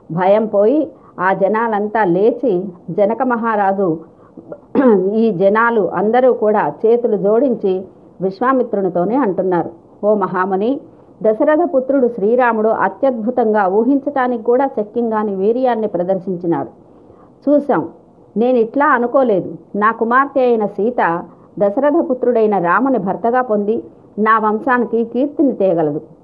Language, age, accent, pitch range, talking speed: Telugu, 50-69, native, 200-255 Hz, 95 wpm